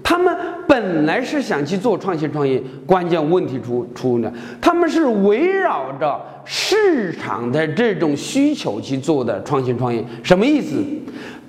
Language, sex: Chinese, male